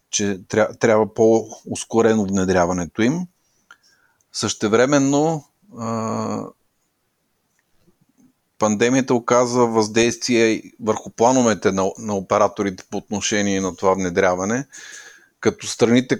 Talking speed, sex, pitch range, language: 80 wpm, male, 100-115 Hz, Bulgarian